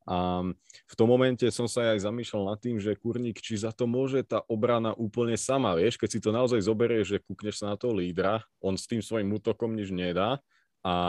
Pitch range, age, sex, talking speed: 90-110 Hz, 20-39, male, 215 wpm